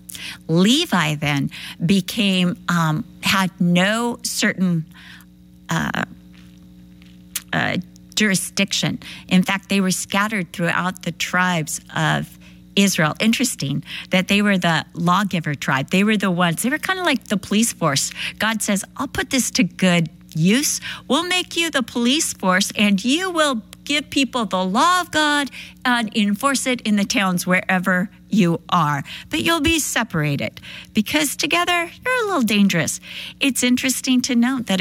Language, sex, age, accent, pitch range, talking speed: English, female, 50-69, American, 165-230 Hz, 150 wpm